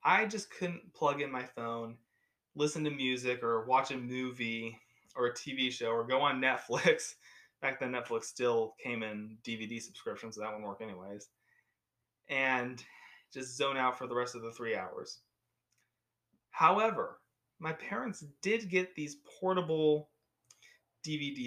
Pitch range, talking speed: 115-155 Hz, 150 wpm